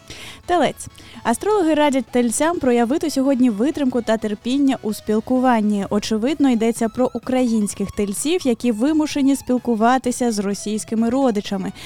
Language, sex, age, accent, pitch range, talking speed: Ukrainian, female, 20-39, native, 220-280 Hz, 110 wpm